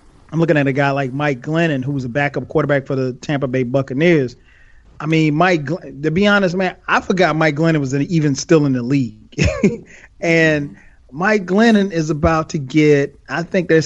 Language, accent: English, American